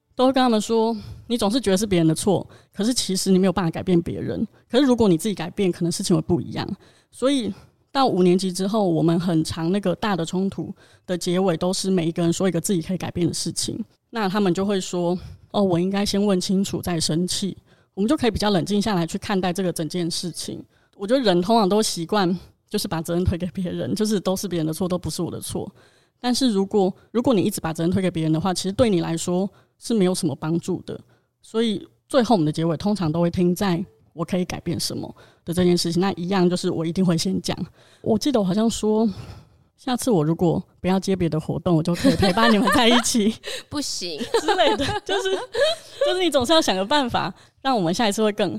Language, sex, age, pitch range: Chinese, female, 20-39, 170-215 Hz